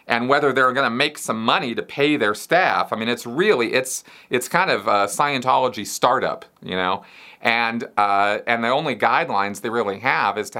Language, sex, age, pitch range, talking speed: English, male, 40-59, 105-130 Hz, 205 wpm